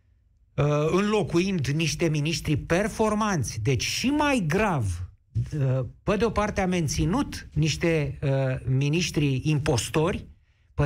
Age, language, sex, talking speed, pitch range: 50-69, Romanian, male, 105 wpm, 130-200 Hz